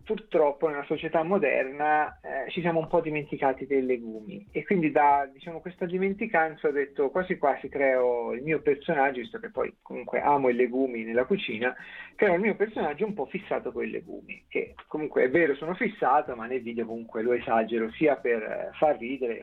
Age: 40-59